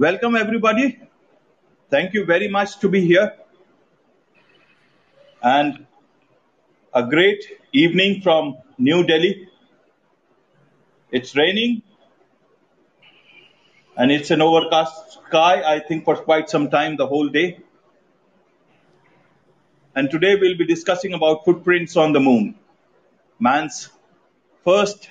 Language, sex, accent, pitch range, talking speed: English, male, Indian, 150-225 Hz, 105 wpm